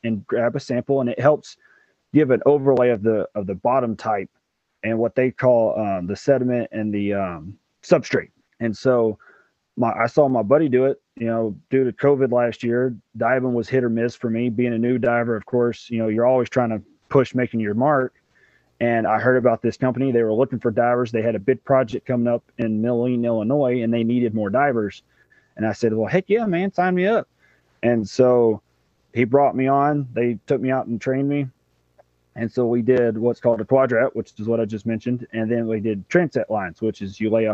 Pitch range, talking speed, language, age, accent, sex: 110-130 Hz, 225 wpm, English, 30-49, American, male